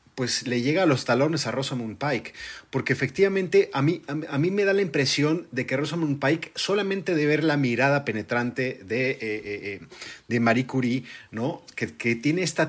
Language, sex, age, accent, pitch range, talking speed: Spanish, male, 40-59, Mexican, 120-155 Hz, 190 wpm